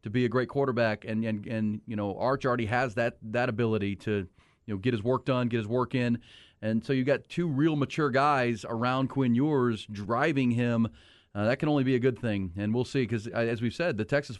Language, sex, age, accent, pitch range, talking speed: English, male, 40-59, American, 115-140 Hz, 240 wpm